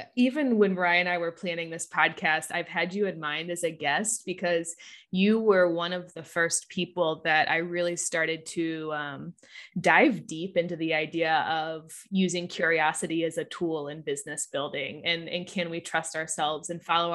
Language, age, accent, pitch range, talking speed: English, 20-39, American, 170-210 Hz, 185 wpm